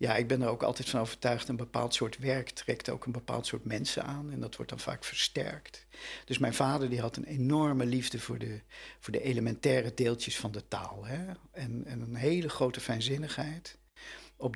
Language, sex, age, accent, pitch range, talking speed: Dutch, male, 50-69, Dutch, 120-150 Hz, 205 wpm